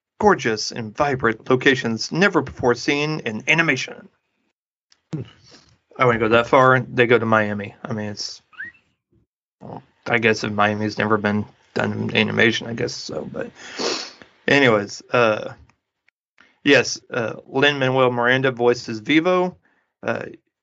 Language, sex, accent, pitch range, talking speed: English, male, American, 120-150 Hz, 125 wpm